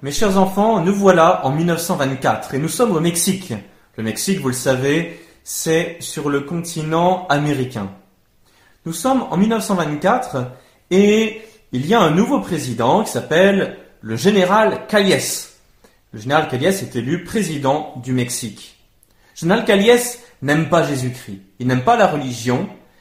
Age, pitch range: 30-49, 125-190 Hz